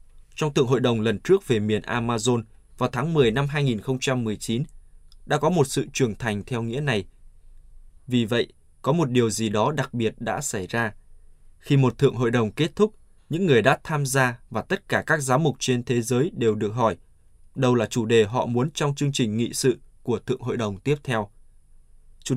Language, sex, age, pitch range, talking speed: Vietnamese, male, 20-39, 105-130 Hz, 205 wpm